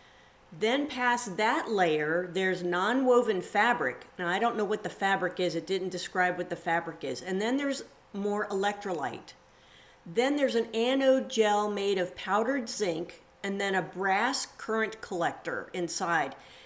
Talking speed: 155 wpm